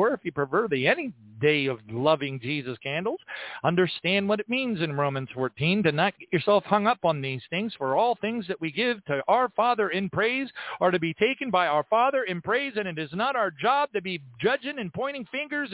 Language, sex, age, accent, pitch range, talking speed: English, male, 40-59, American, 170-235 Hz, 225 wpm